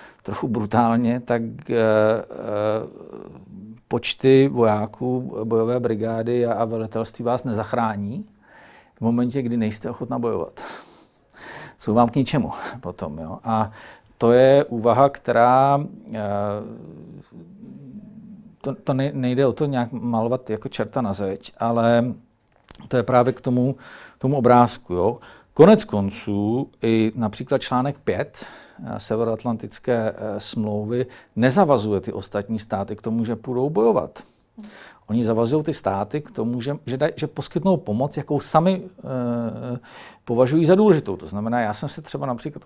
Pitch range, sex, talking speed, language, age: 110-135 Hz, male, 125 wpm, Czech, 40-59